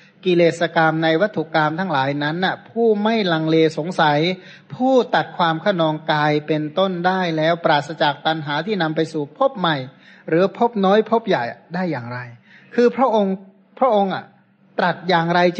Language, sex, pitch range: Thai, male, 160-205 Hz